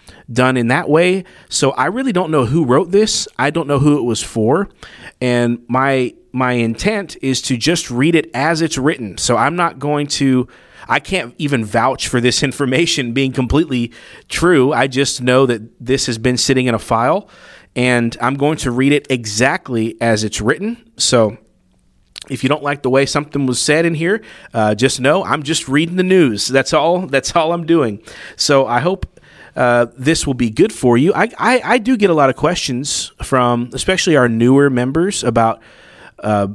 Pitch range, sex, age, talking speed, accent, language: 115-150 Hz, male, 30-49, 195 wpm, American, English